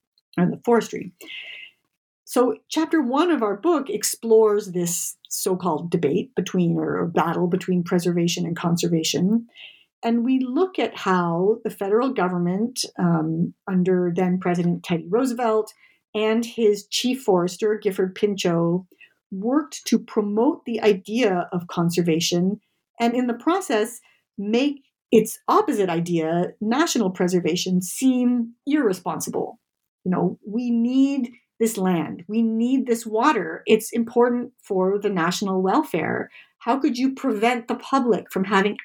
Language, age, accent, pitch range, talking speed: English, 50-69, American, 180-235 Hz, 130 wpm